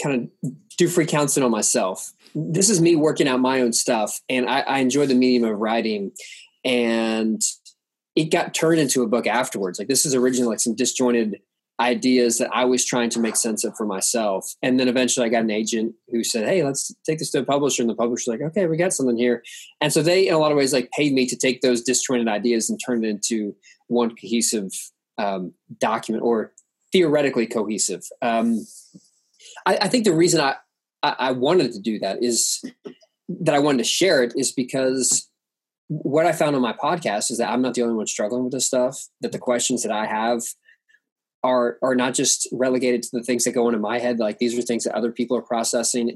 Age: 20-39